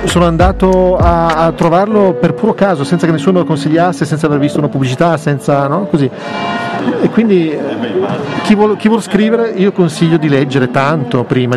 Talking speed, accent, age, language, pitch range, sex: 170 wpm, native, 40-59, Italian, 135-165 Hz, male